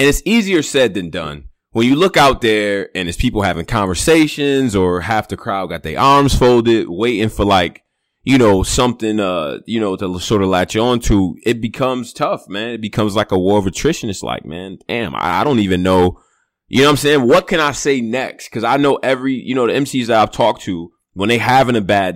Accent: American